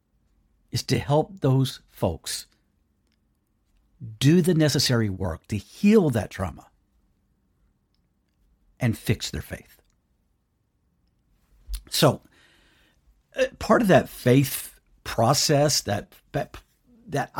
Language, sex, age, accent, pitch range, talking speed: English, male, 50-69, American, 100-140 Hz, 95 wpm